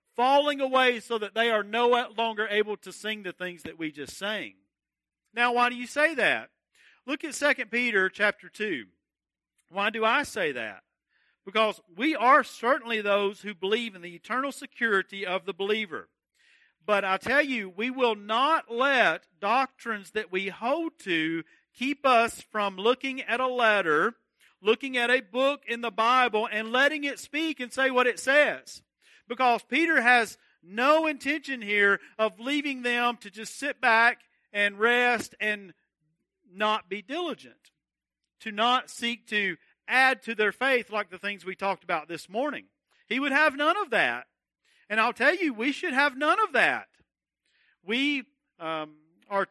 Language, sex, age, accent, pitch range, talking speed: English, male, 50-69, American, 195-270 Hz, 165 wpm